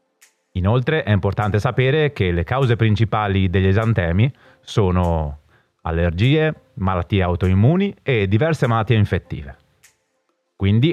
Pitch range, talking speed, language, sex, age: 100-145 Hz, 105 wpm, Italian, male, 30-49